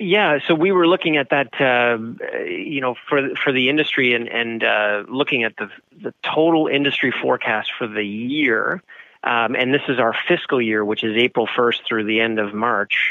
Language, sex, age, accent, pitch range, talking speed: English, male, 30-49, American, 115-150 Hz, 195 wpm